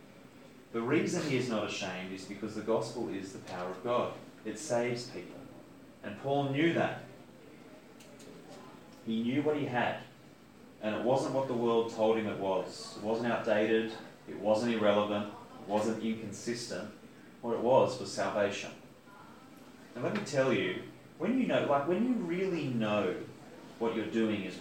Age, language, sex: 30-49, English, male